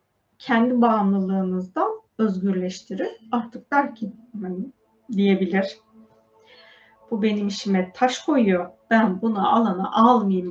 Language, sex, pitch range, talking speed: Turkish, female, 195-265 Hz, 90 wpm